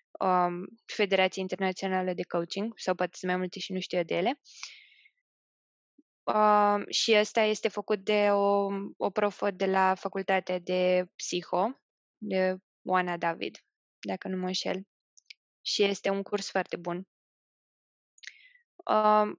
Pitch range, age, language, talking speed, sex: 185-225 Hz, 20-39, Romanian, 130 wpm, female